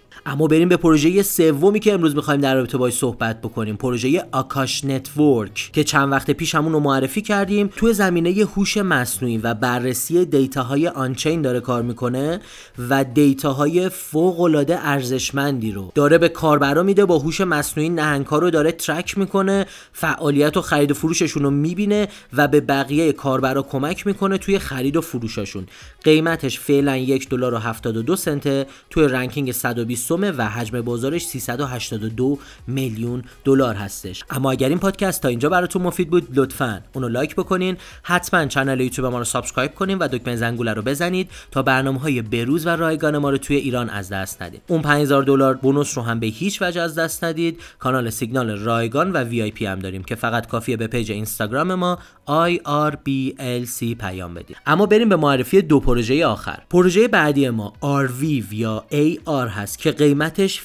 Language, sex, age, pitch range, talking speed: Persian, male, 30-49, 125-165 Hz, 165 wpm